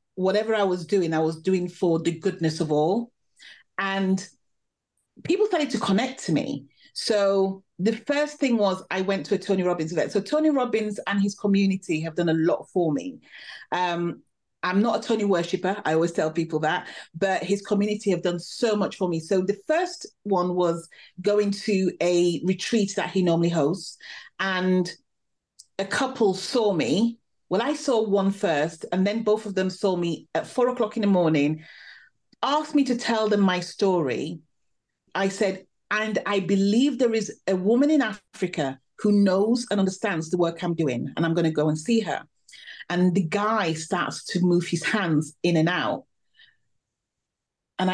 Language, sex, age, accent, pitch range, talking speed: English, female, 30-49, British, 170-205 Hz, 180 wpm